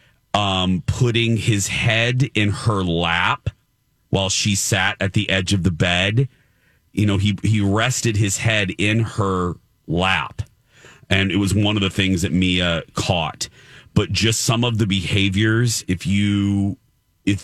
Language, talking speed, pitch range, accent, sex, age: English, 155 wpm, 95-115 Hz, American, male, 40-59